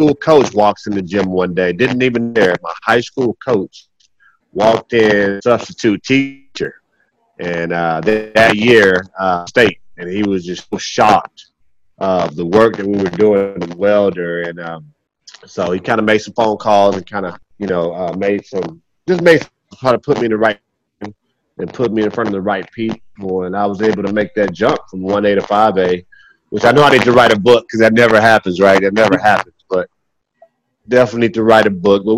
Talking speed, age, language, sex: 210 wpm, 30-49, English, male